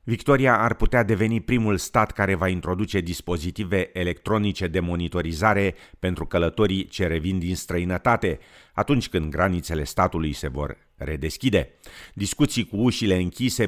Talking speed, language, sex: 130 wpm, Romanian, male